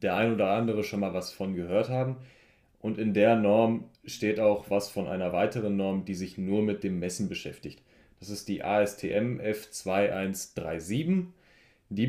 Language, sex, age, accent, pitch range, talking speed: German, male, 20-39, German, 95-115 Hz, 170 wpm